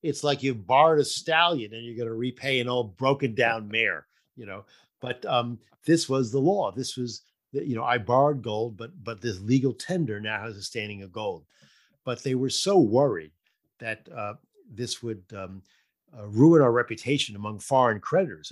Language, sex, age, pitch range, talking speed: English, male, 50-69, 105-135 Hz, 190 wpm